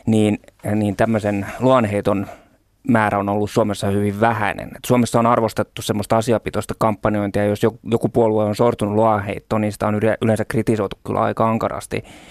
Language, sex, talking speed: Finnish, male, 160 wpm